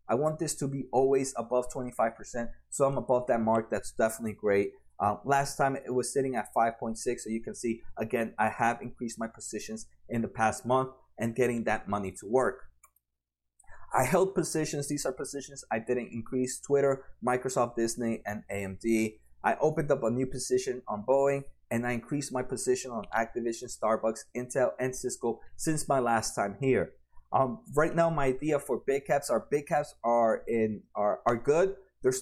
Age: 30-49